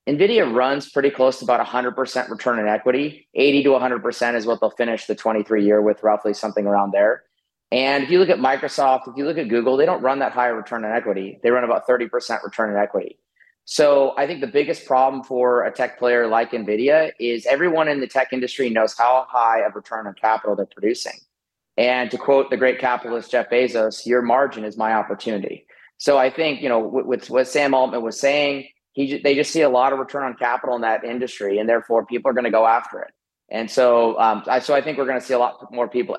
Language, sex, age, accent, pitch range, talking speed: English, male, 30-49, American, 115-135 Hz, 230 wpm